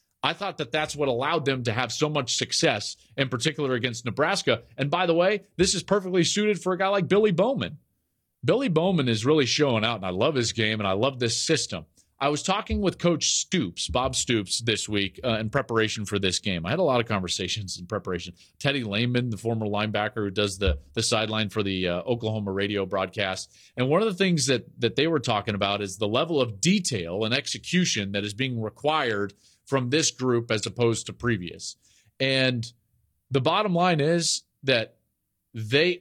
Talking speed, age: 205 wpm, 30-49